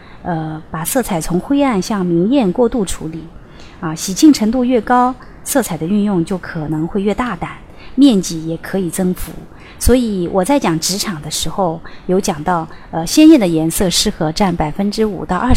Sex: female